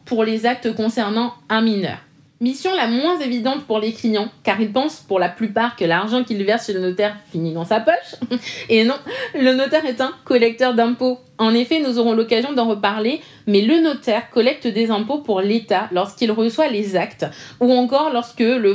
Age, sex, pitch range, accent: 30-49, female, 210-260 Hz, French